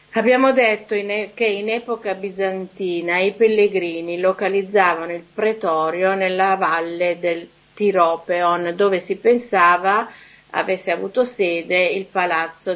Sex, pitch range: female, 170-205 Hz